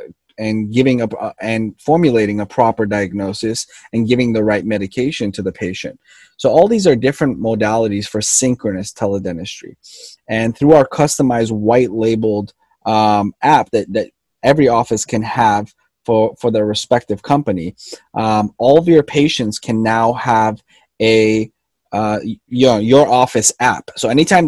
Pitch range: 105-135 Hz